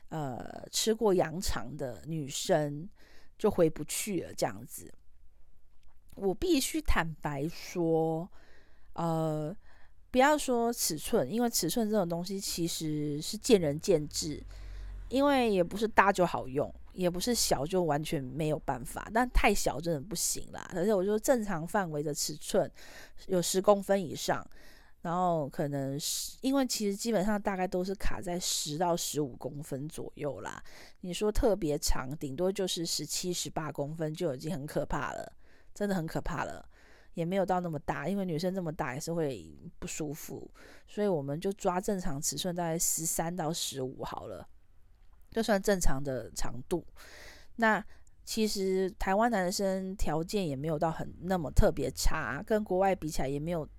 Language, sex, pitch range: Chinese, female, 150-195 Hz